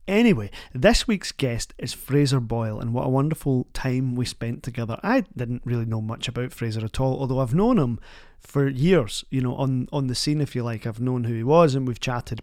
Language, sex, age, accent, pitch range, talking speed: English, male, 30-49, British, 120-145 Hz, 225 wpm